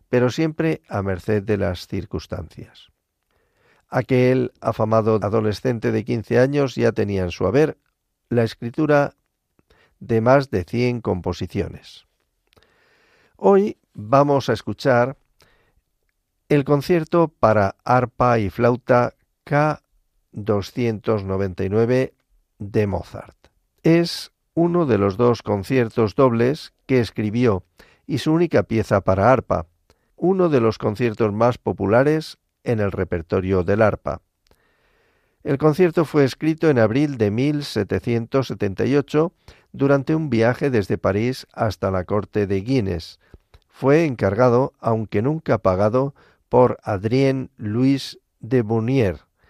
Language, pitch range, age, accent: Spanish, 100-135 Hz, 50-69, Spanish